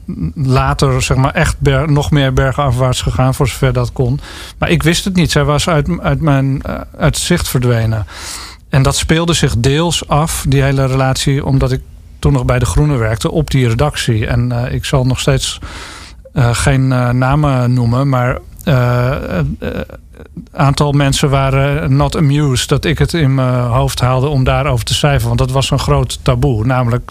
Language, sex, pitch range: Dutch, male, 120-140 Hz